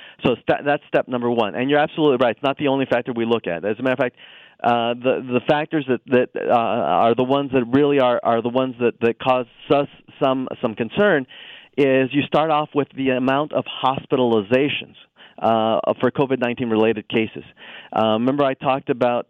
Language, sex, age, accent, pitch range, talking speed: English, male, 40-59, American, 120-140 Hz, 195 wpm